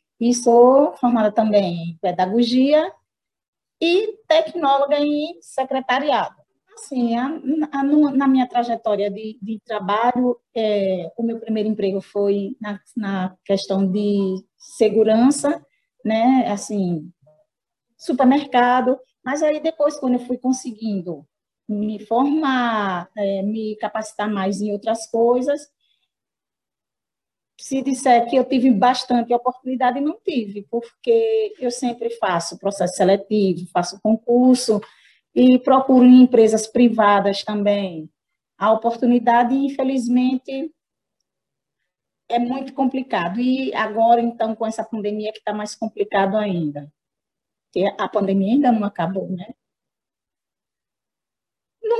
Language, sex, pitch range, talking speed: Portuguese, female, 210-265 Hz, 115 wpm